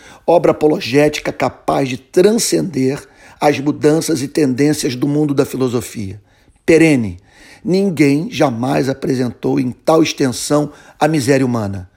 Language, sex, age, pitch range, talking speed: Portuguese, male, 50-69, 135-165 Hz, 115 wpm